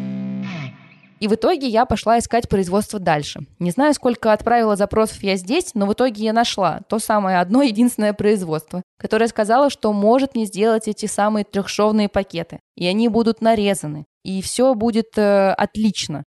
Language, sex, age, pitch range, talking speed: Russian, female, 20-39, 185-225 Hz, 160 wpm